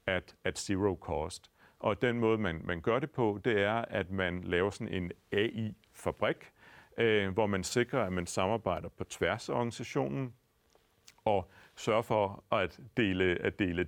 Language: Danish